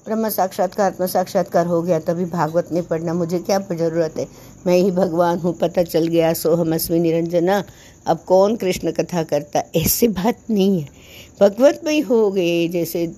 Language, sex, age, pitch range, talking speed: Hindi, female, 60-79, 175-235 Hz, 175 wpm